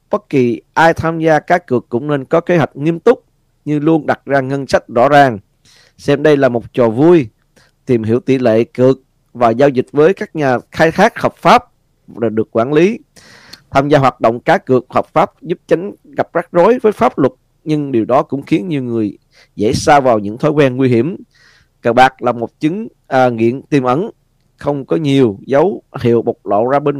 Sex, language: male, Vietnamese